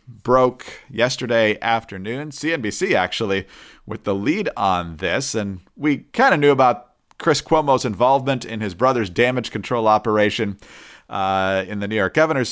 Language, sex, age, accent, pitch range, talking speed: English, male, 40-59, American, 110-145 Hz, 150 wpm